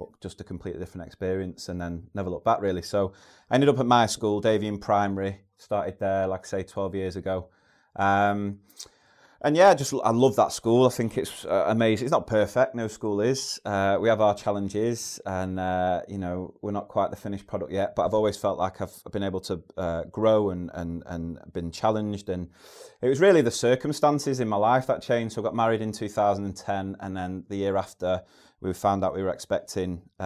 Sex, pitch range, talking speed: male, 90-105 Hz, 210 wpm